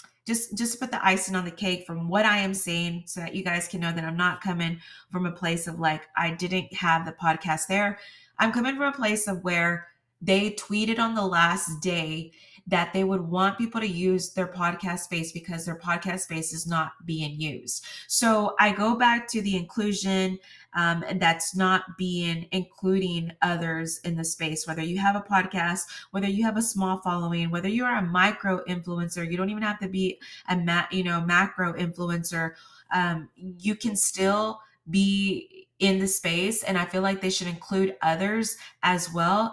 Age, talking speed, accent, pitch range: 20-39, 195 wpm, American, 170-200 Hz